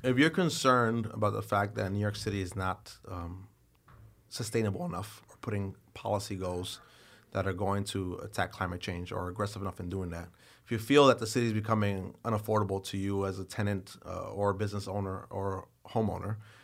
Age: 30-49